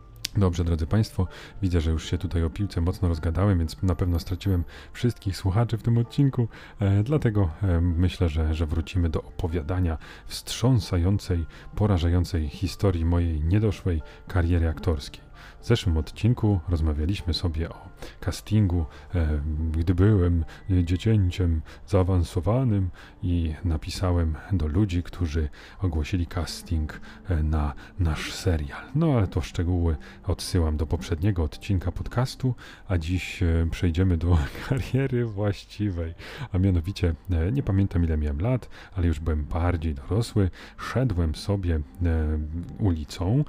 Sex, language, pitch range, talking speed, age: male, Polish, 85-105 Hz, 120 wpm, 30-49